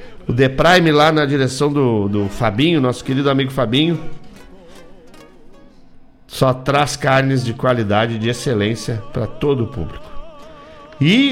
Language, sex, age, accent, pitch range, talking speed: Portuguese, male, 50-69, Brazilian, 120-160 Hz, 135 wpm